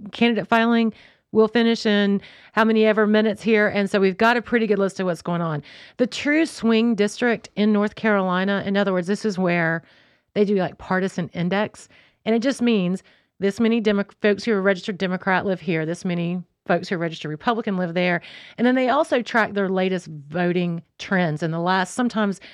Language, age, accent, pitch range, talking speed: English, 40-59, American, 180-220 Hz, 195 wpm